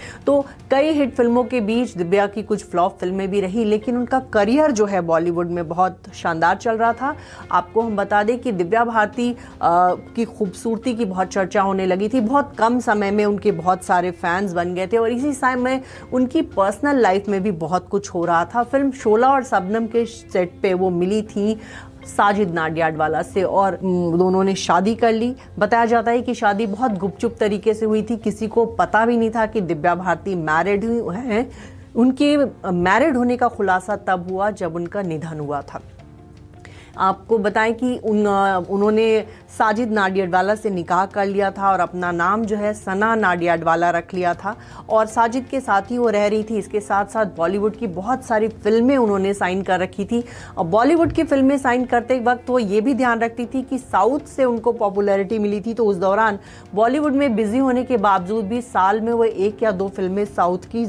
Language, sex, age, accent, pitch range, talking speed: English, female, 30-49, Indian, 185-235 Hz, 180 wpm